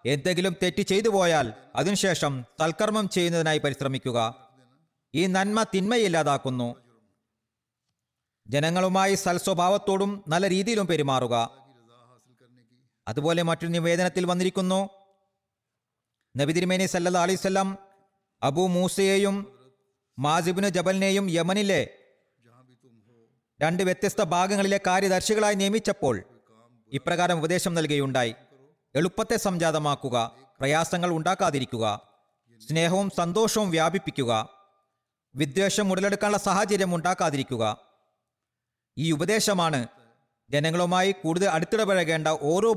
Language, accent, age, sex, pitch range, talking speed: Malayalam, native, 40-59, male, 125-190 Hz, 75 wpm